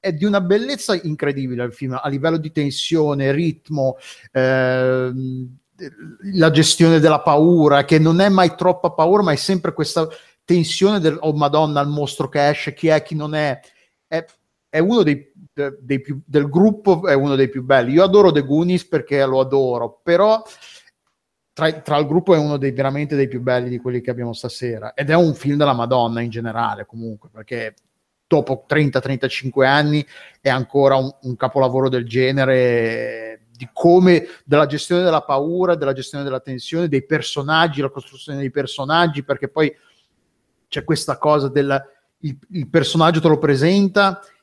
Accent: native